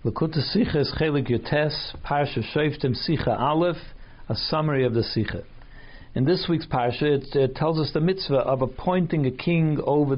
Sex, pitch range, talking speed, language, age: male, 125-160 Hz, 170 wpm, English, 60-79